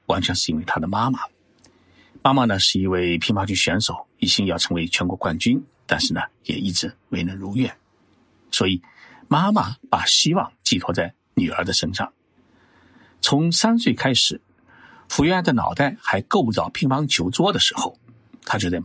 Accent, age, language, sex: native, 50-69, Chinese, male